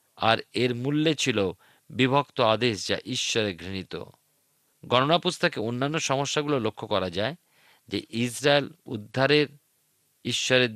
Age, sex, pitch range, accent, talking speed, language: 50-69, male, 110-155 Hz, native, 105 wpm, Bengali